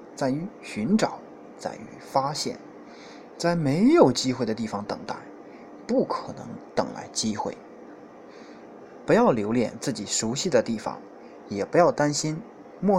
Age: 20-39